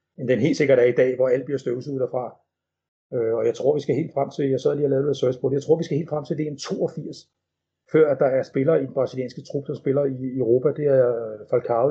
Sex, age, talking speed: male, 40-59, 270 wpm